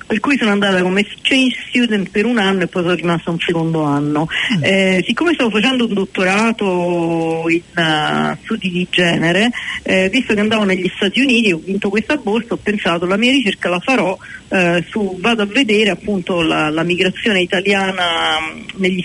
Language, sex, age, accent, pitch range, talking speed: Italian, female, 40-59, native, 180-225 Hz, 185 wpm